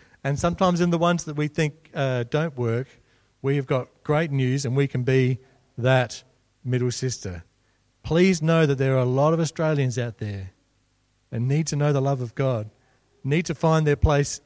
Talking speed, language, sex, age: 190 wpm, English, male, 40-59